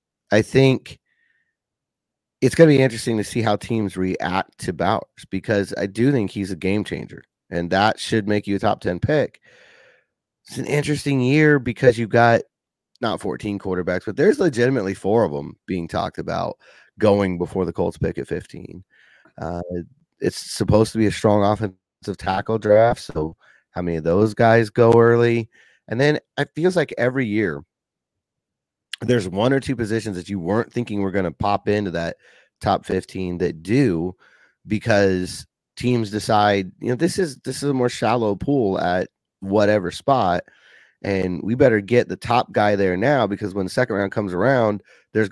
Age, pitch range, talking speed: 30-49, 95-120 Hz, 175 wpm